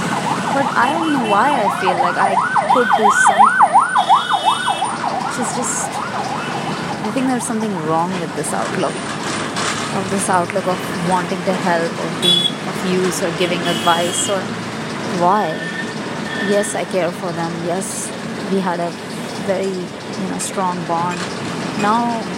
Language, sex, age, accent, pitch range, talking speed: English, female, 20-39, Indian, 185-215 Hz, 140 wpm